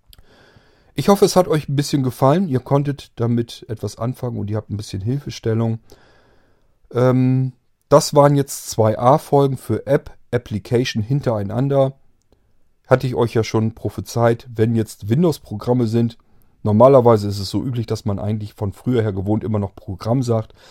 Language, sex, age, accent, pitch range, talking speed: German, male, 40-59, German, 105-130 Hz, 155 wpm